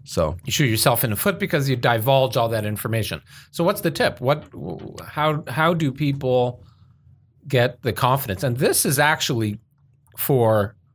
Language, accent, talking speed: English, American, 165 wpm